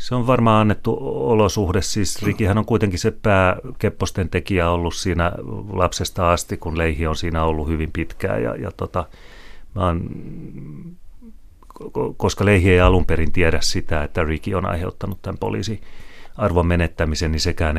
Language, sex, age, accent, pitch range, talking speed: Finnish, male, 30-49, native, 80-100 Hz, 150 wpm